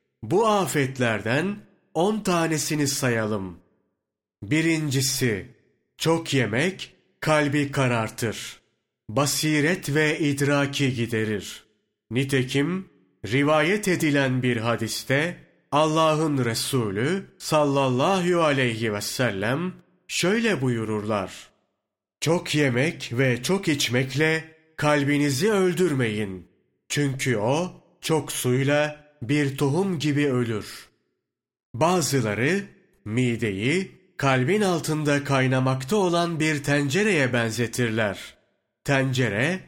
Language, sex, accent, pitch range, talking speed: Turkish, male, native, 125-160 Hz, 80 wpm